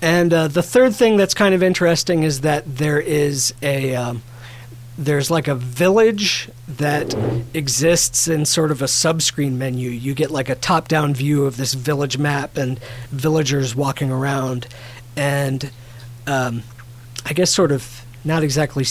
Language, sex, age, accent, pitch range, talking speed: English, male, 40-59, American, 125-155 Hz, 155 wpm